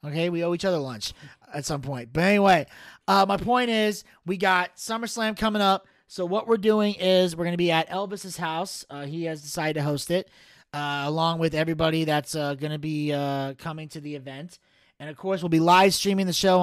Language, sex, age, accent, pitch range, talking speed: English, male, 30-49, American, 160-200 Hz, 225 wpm